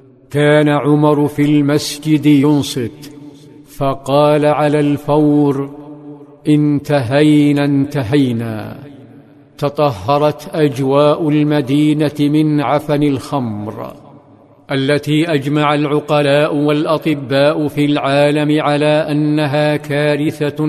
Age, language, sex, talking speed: 50-69, Arabic, male, 75 wpm